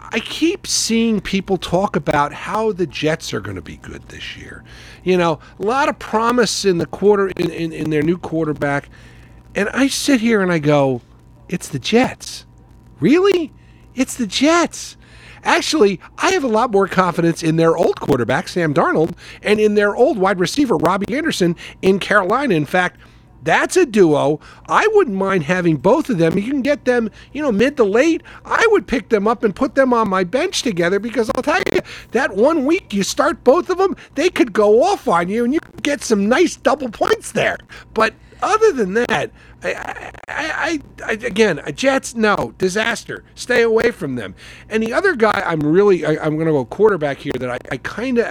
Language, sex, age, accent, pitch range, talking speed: English, male, 50-69, American, 165-255 Hz, 200 wpm